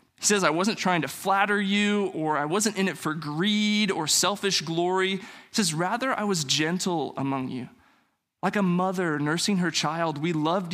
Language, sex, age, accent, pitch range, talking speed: English, male, 20-39, American, 155-195 Hz, 190 wpm